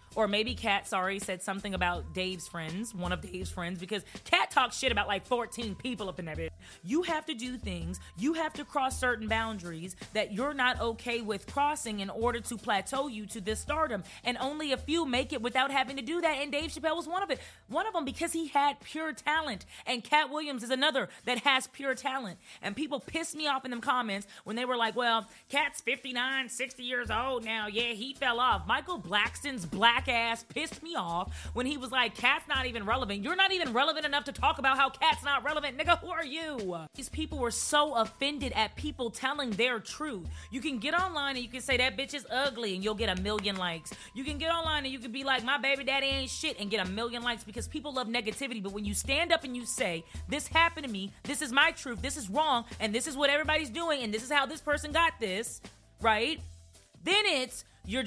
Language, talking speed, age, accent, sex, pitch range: English, 235 wpm, 30-49, American, female, 215-290 Hz